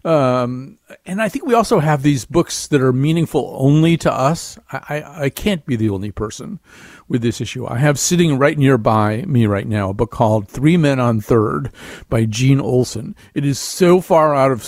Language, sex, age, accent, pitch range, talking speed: English, male, 50-69, American, 120-160 Hz, 205 wpm